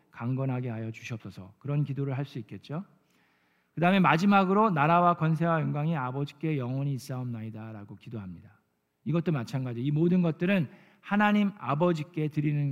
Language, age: Korean, 40-59